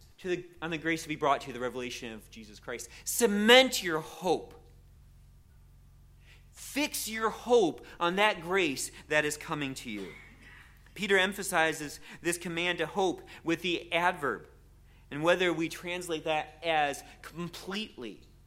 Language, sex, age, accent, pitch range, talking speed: English, male, 30-49, American, 155-215 Hz, 145 wpm